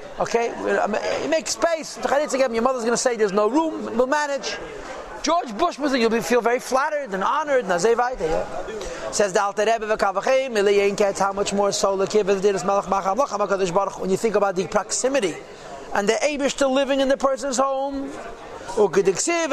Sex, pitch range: male, 205-270 Hz